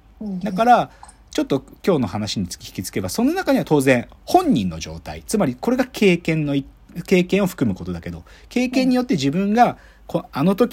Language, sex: Japanese, male